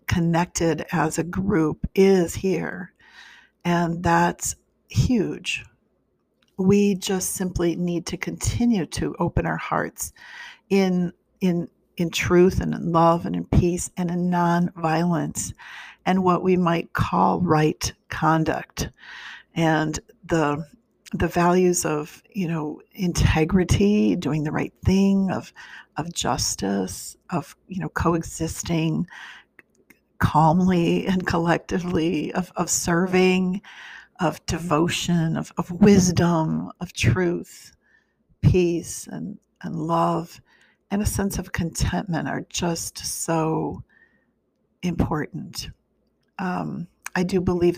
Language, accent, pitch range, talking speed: English, American, 160-185 Hz, 110 wpm